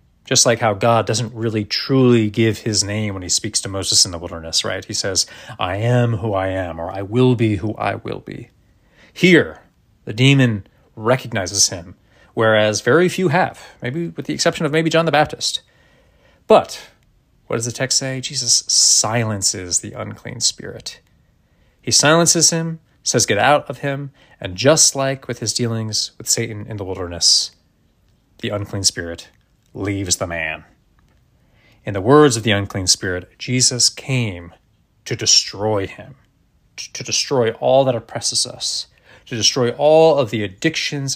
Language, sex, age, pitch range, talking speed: English, male, 30-49, 100-135 Hz, 165 wpm